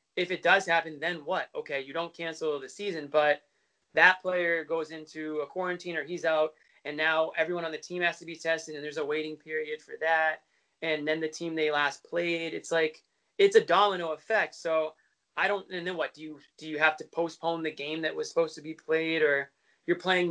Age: 20-39